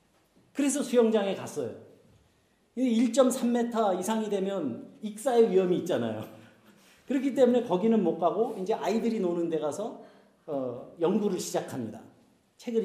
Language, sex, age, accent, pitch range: Korean, male, 40-59, native, 205-275 Hz